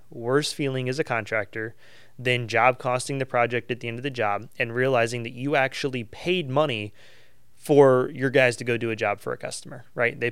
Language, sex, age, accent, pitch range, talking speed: English, male, 20-39, American, 115-145 Hz, 210 wpm